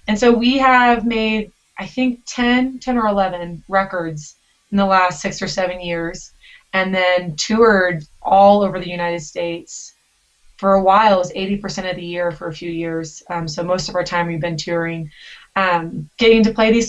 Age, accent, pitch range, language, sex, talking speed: 20-39, American, 175-210 Hz, English, female, 190 wpm